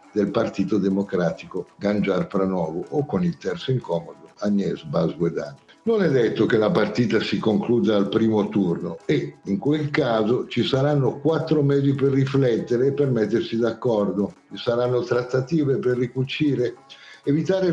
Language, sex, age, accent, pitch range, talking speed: Italian, male, 60-79, native, 105-145 Hz, 150 wpm